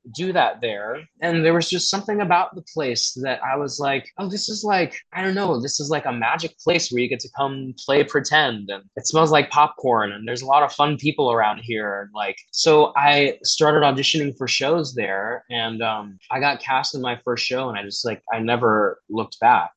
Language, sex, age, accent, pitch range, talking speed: English, male, 20-39, American, 115-150 Hz, 225 wpm